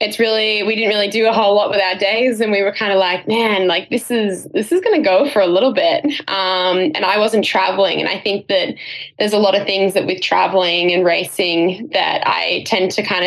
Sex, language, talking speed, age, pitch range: female, English, 250 wpm, 10-29, 185-215 Hz